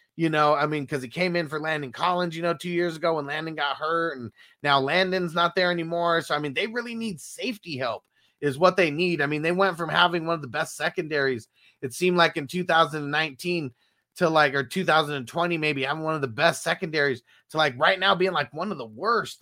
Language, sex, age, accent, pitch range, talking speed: English, male, 30-49, American, 135-175 Hz, 230 wpm